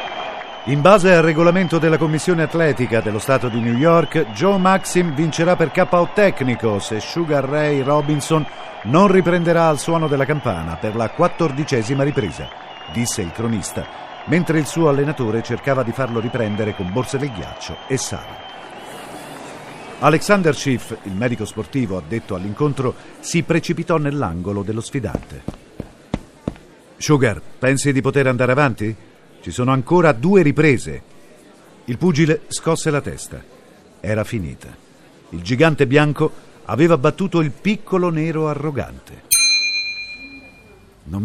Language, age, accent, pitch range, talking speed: Italian, 50-69, native, 105-160 Hz, 130 wpm